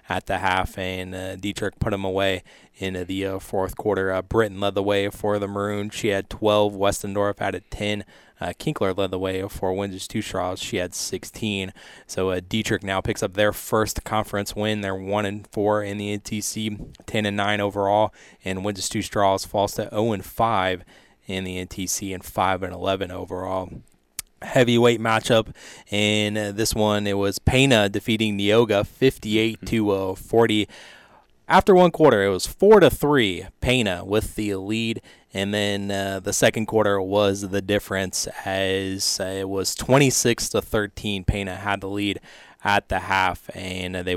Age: 20-39